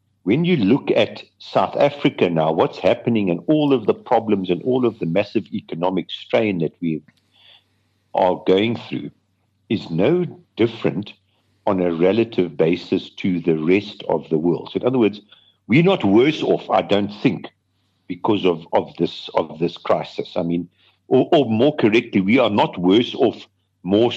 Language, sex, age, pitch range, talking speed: English, male, 50-69, 90-105 Hz, 170 wpm